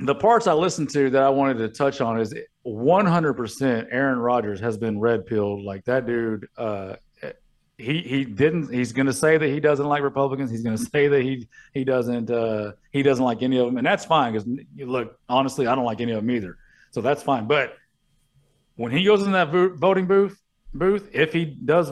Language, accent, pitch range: English, American, 115-140 Hz